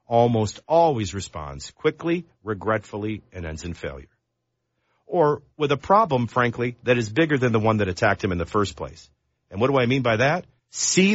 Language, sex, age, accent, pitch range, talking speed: English, male, 50-69, American, 100-140 Hz, 190 wpm